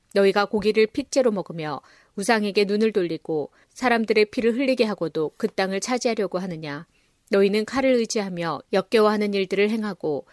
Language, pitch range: Korean, 180-220 Hz